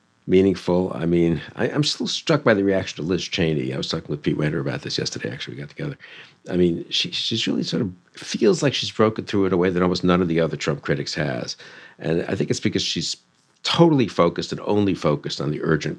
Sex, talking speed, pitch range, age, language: male, 240 wpm, 75-95 Hz, 50-69, English